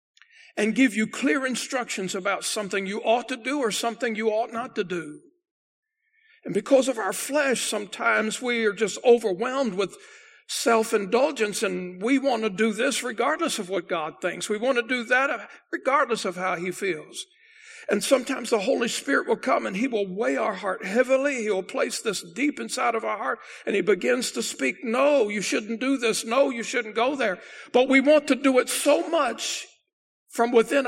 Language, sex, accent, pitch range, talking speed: English, male, American, 220-285 Hz, 190 wpm